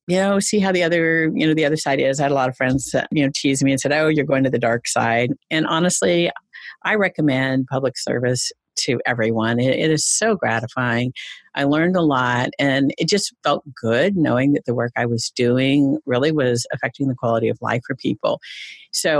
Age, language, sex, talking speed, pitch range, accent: 50-69, English, female, 215 wpm, 135-170 Hz, American